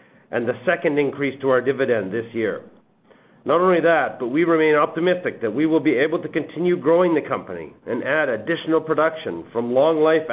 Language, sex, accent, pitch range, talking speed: English, male, American, 120-165 Hz, 185 wpm